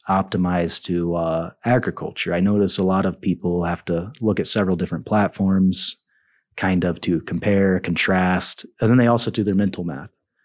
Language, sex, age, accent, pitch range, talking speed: English, male, 30-49, American, 95-115 Hz, 170 wpm